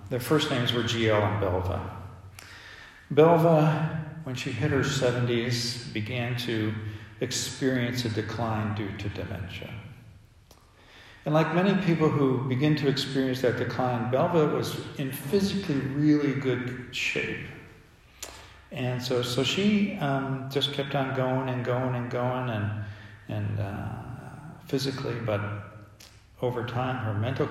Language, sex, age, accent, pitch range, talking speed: English, male, 50-69, American, 110-140 Hz, 130 wpm